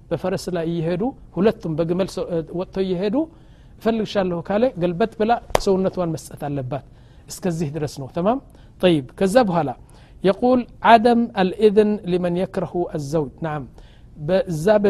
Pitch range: 155-210 Hz